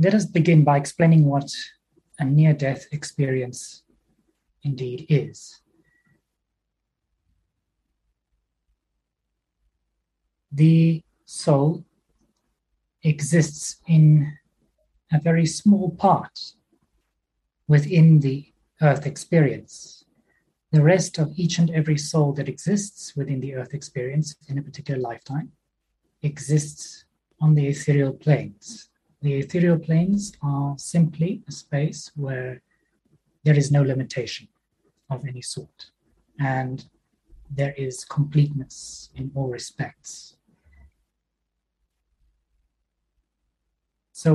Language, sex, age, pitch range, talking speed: English, male, 30-49, 130-160 Hz, 90 wpm